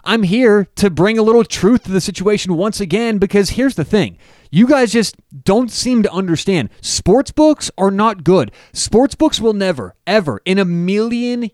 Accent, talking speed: American, 185 wpm